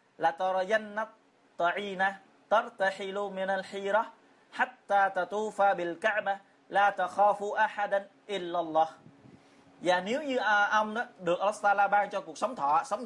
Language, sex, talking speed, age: Vietnamese, male, 110 wpm, 30-49